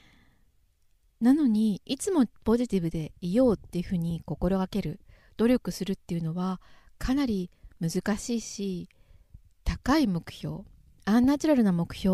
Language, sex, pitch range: Japanese, female, 175-230 Hz